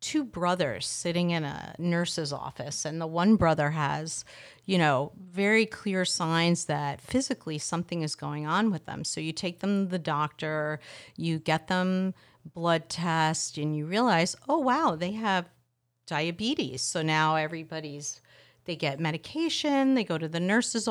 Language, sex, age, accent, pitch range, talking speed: English, female, 40-59, American, 160-215 Hz, 160 wpm